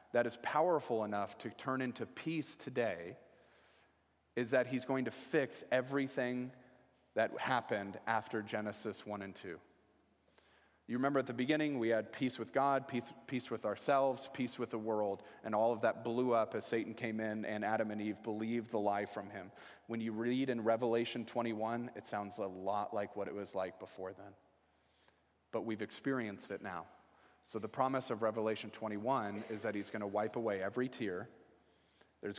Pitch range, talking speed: 105-125 Hz, 180 wpm